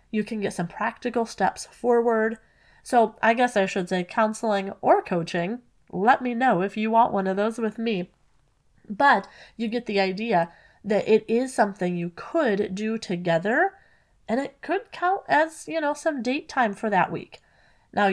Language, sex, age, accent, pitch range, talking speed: English, female, 30-49, American, 180-240 Hz, 180 wpm